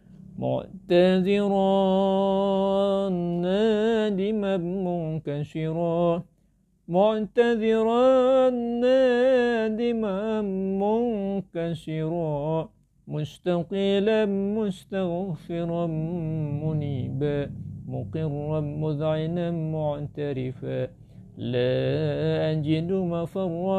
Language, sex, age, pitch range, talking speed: Indonesian, male, 50-69, 150-200 Hz, 40 wpm